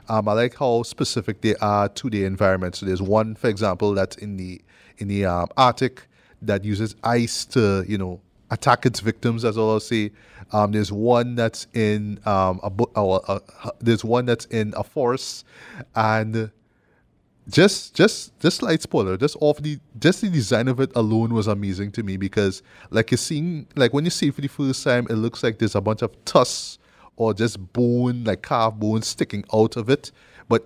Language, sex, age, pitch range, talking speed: English, male, 30-49, 105-125 Hz, 195 wpm